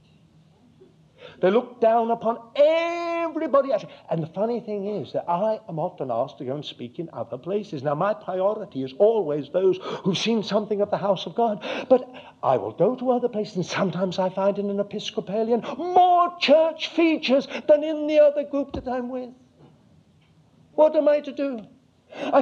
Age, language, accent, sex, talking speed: 60-79, English, British, male, 180 wpm